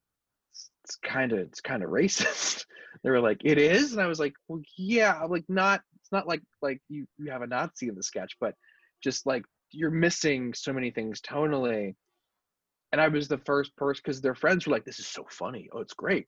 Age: 20-39